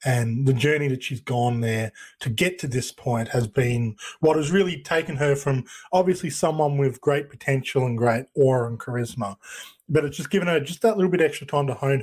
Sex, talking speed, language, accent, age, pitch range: male, 215 wpm, English, Australian, 20-39, 125-155 Hz